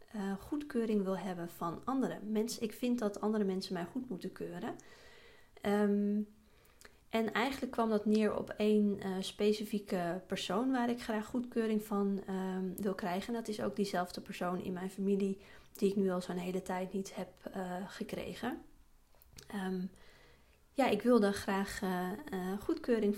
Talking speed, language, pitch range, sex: 160 wpm, Dutch, 190-230 Hz, female